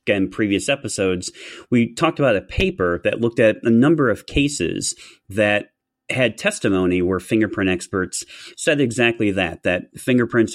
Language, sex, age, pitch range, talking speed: English, male, 30-49, 95-115 Hz, 150 wpm